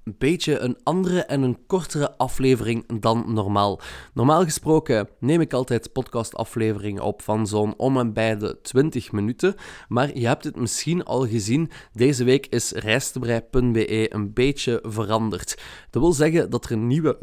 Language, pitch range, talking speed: Dutch, 110-135 Hz, 160 wpm